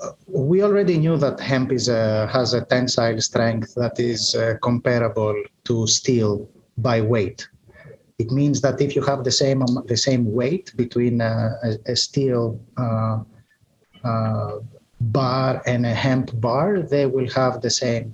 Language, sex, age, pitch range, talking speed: English, male, 30-49, 115-140 Hz, 150 wpm